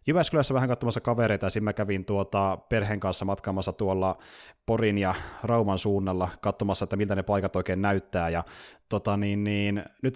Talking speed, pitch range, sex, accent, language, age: 170 wpm, 100-120 Hz, male, native, Finnish, 30-49